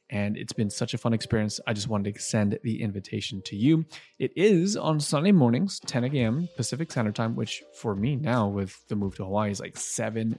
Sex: male